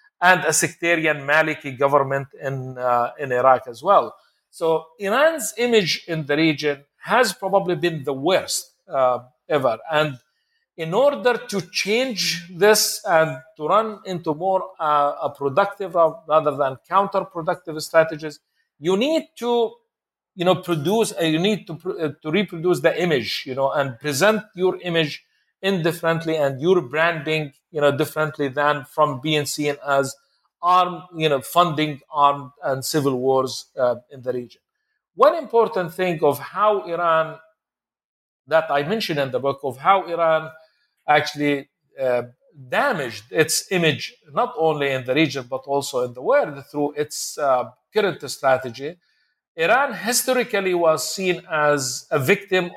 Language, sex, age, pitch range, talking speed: English, male, 50-69, 145-190 Hz, 150 wpm